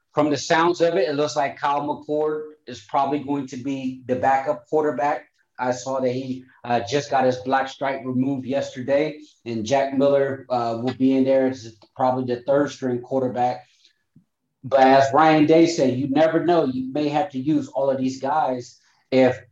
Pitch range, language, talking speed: 125-145 Hz, English, 190 wpm